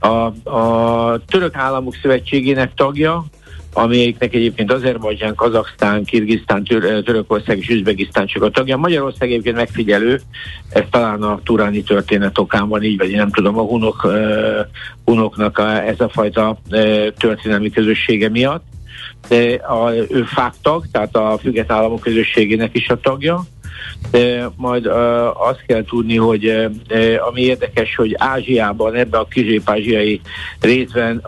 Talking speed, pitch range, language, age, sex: 135 wpm, 105-125 Hz, Hungarian, 60-79, male